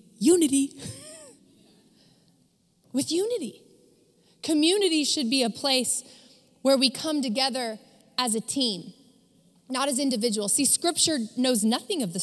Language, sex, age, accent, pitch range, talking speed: English, female, 20-39, American, 205-280 Hz, 120 wpm